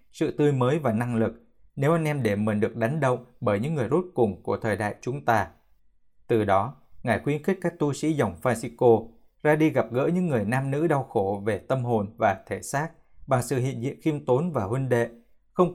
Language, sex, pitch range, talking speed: Vietnamese, male, 115-145 Hz, 230 wpm